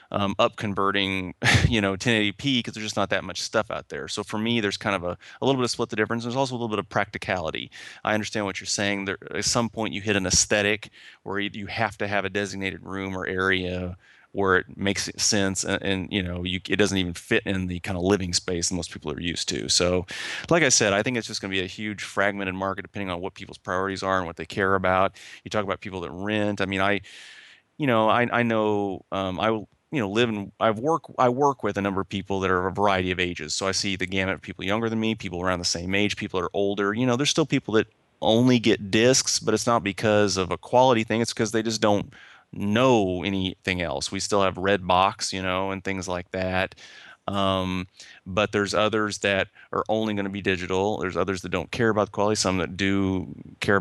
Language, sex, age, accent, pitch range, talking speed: English, male, 30-49, American, 95-110 Hz, 250 wpm